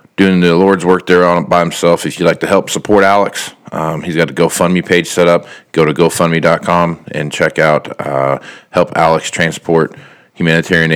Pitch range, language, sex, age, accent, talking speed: 75-90 Hz, English, male, 40-59, American, 185 wpm